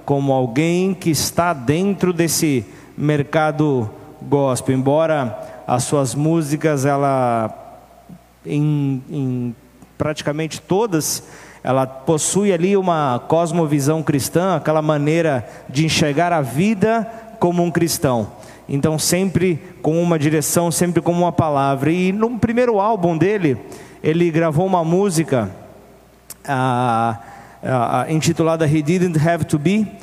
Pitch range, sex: 150-175 Hz, male